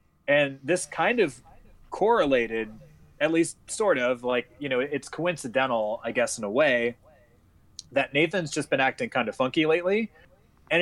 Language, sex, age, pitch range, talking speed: English, male, 20-39, 115-145 Hz, 160 wpm